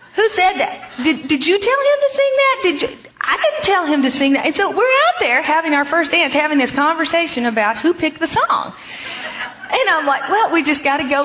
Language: English